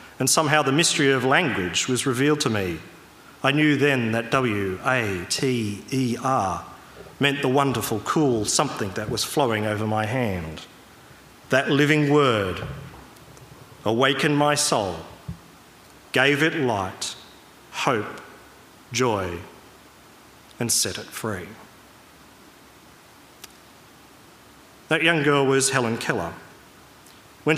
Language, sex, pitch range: English, male, 115-145 Hz